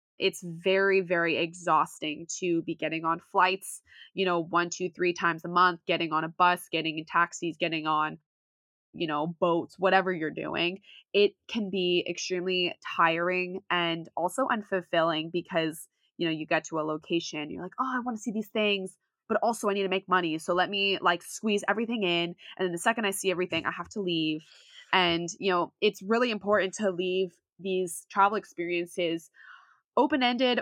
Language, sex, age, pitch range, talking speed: English, female, 20-39, 170-195 Hz, 185 wpm